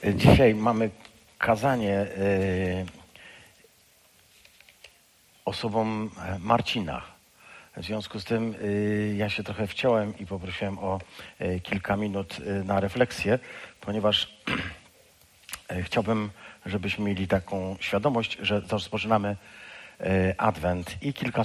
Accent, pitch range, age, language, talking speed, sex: native, 100-120 Hz, 50-69, Polish, 105 wpm, male